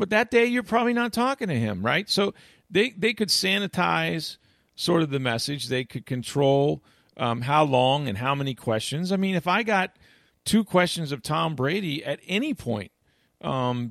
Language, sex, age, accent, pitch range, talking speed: English, male, 40-59, American, 120-180 Hz, 185 wpm